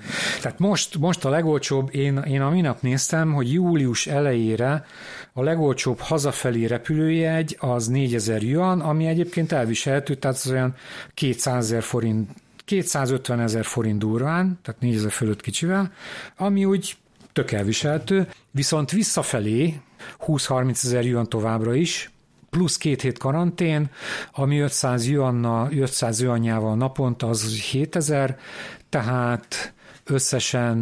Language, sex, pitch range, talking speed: Hungarian, male, 120-155 Hz, 120 wpm